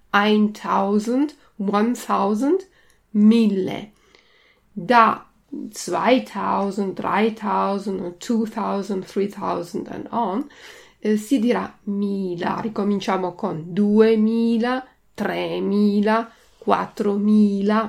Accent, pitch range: native, 190-240 Hz